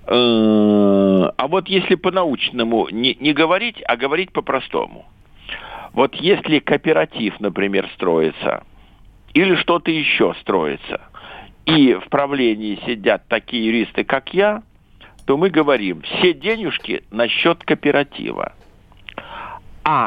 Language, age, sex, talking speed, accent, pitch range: Russian, 60-79, male, 105 wpm, native, 120-190 Hz